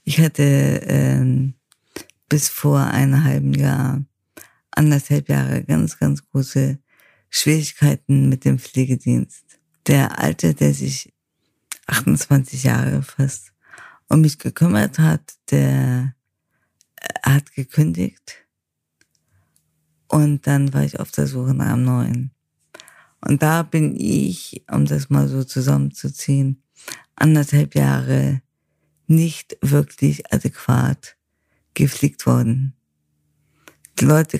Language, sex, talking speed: German, female, 105 wpm